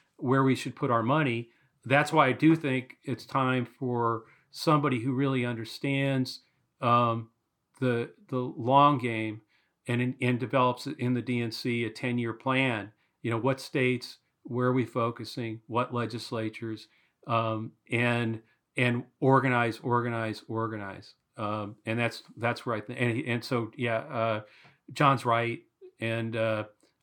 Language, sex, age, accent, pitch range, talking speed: English, male, 40-59, American, 115-130 Hz, 145 wpm